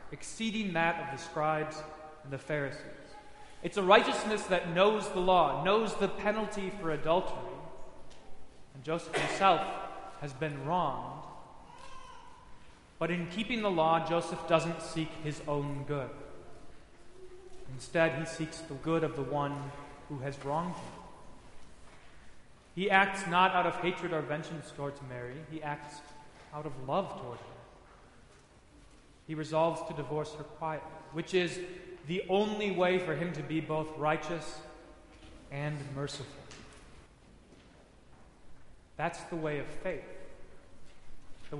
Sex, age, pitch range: male, 30-49, 150-185 Hz